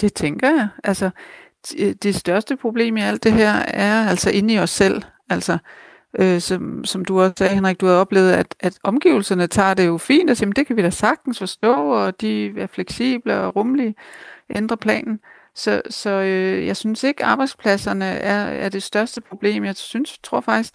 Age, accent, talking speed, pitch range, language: 60-79, native, 195 wpm, 180-210 Hz, Danish